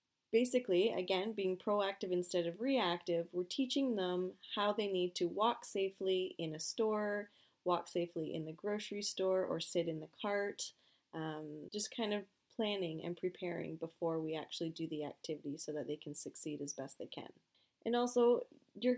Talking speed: 175 wpm